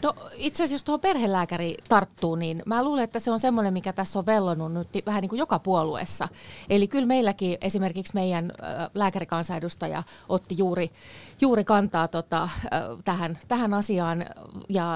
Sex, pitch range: female, 170-215 Hz